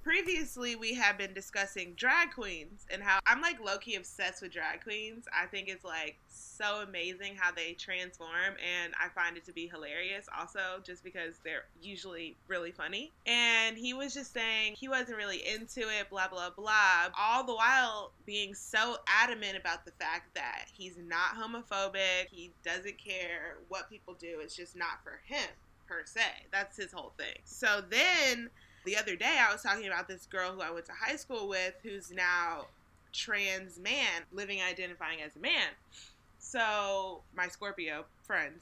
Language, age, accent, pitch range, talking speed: English, 20-39, American, 185-250 Hz, 175 wpm